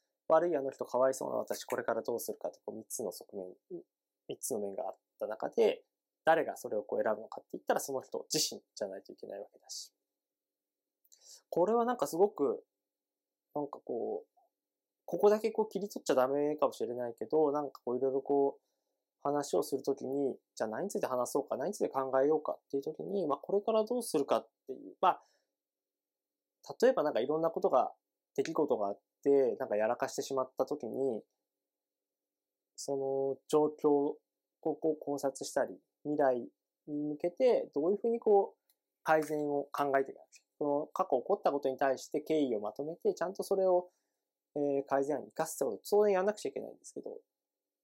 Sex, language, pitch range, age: male, Japanese, 140-225 Hz, 20-39